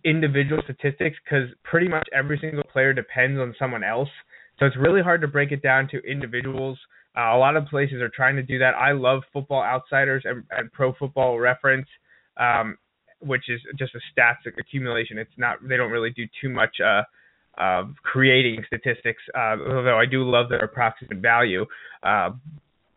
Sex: male